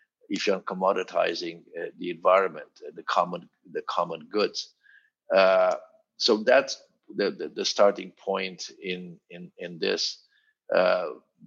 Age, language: 50-69, English